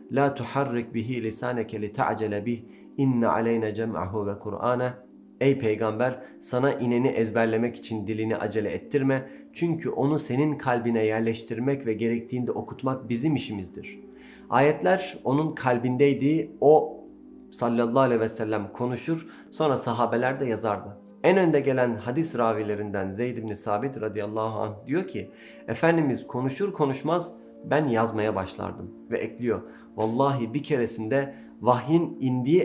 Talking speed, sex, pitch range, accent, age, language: 125 wpm, male, 110-140 Hz, native, 40-59, Turkish